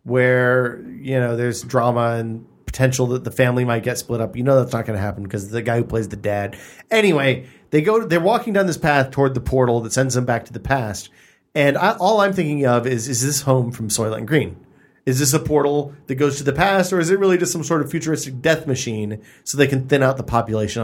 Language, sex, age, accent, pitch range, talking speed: English, male, 40-59, American, 115-165 Hz, 260 wpm